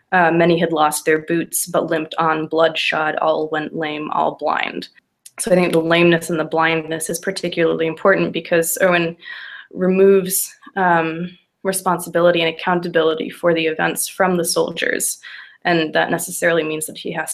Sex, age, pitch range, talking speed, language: female, 20-39, 160-180 Hz, 160 wpm, English